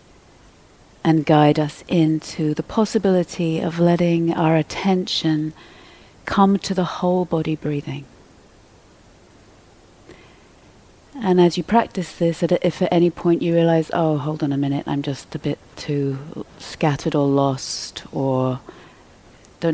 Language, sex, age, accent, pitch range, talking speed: English, female, 40-59, British, 140-165 Hz, 130 wpm